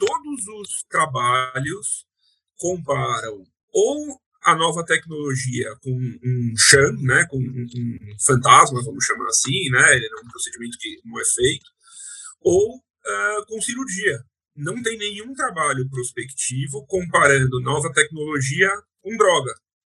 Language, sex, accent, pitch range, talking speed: Portuguese, male, Brazilian, 135-205 Hz, 125 wpm